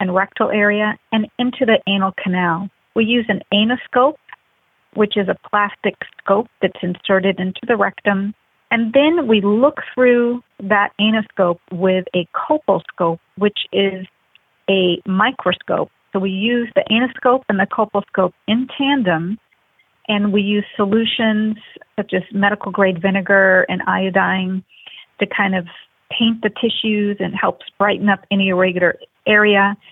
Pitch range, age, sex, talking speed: 190-225 Hz, 40-59, female, 140 wpm